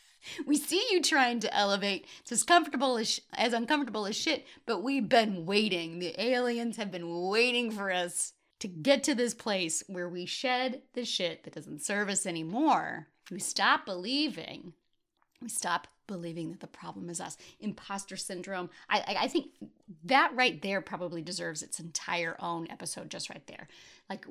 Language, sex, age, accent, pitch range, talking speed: English, female, 30-49, American, 175-240 Hz, 175 wpm